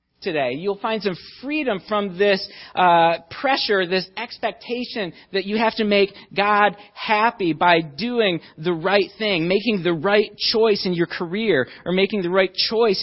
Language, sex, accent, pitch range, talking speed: English, male, American, 180-220 Hz, 160 wpm